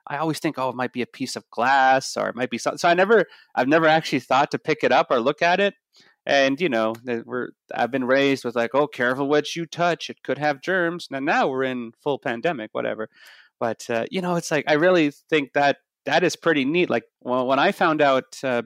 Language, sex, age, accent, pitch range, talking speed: English, male, 30-49, American, 135-185 Hz, 245 wpm